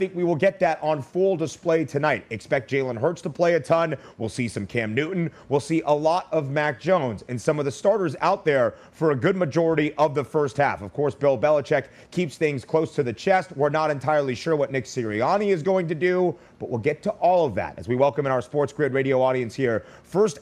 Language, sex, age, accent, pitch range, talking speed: English, male, 30-49, American, 130-160 Hz, 240 wpm